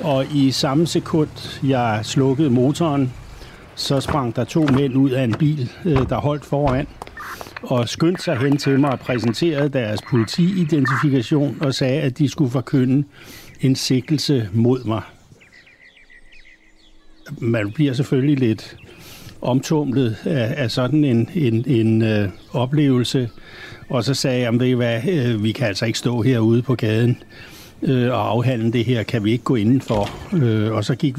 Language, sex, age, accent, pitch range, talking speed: Danish, male, 60-79, native, 115-145 Hz, 150 wpm